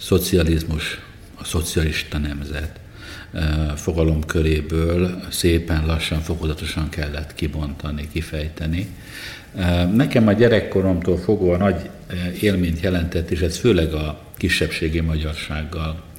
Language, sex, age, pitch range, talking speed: Slovak, male, 60-79, 80-90 Hz, 95 wpm